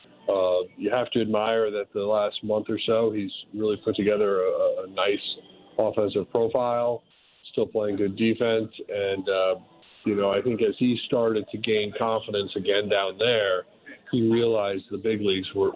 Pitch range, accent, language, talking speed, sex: 105-125 Hz, American, English, 170 wpm, male